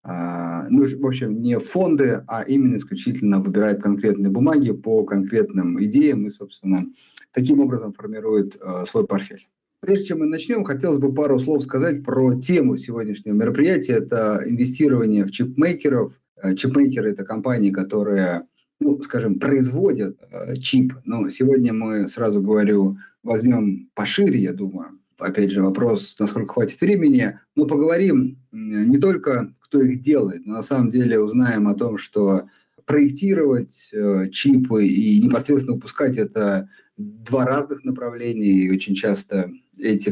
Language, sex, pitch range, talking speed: Russian, male, 100-140 Hz, 135 wpm